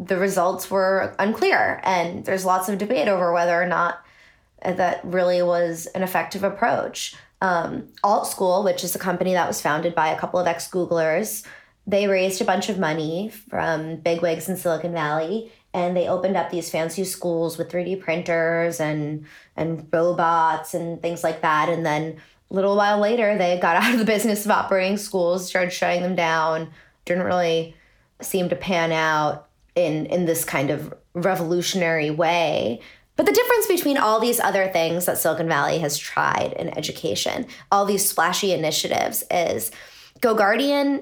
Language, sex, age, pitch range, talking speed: English, female, 20-39, 165-190 Hz, 170 wpm